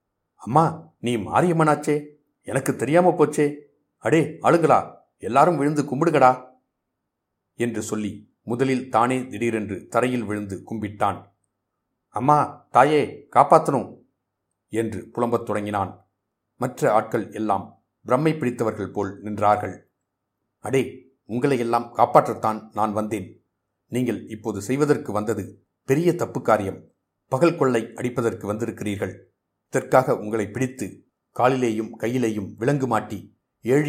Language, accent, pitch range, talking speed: Tamil, native, 105-135 Hz, 95 wpm